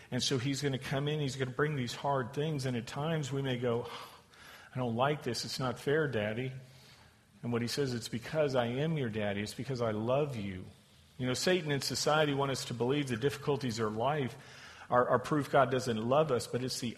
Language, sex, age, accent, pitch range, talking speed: English, male, 50-69, American, 115-140 Hz, 240 wpm